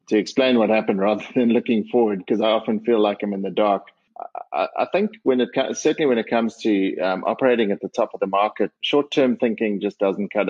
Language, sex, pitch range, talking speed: English, male, 100-130 Hz, 230 wpm